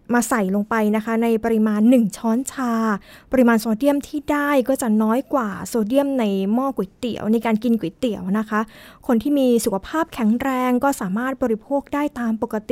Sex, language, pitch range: female, Thai, 220-270 Hz